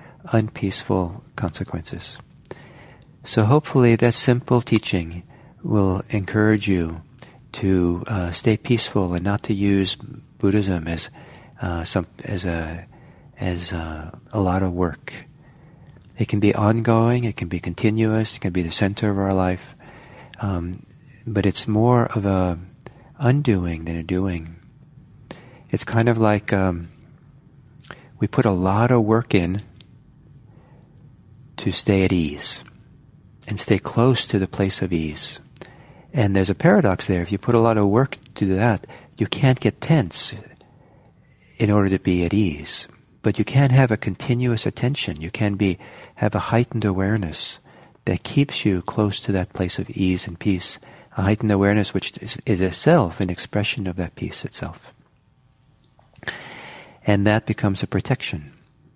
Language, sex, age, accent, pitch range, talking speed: English, male, 40-59, American, 95-130 Hz, 150 wpm